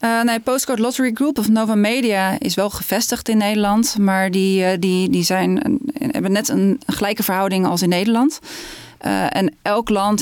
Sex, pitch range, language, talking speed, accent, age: female, 190-225 Hz, Dutch, 180 wpm, Dutch, 20-39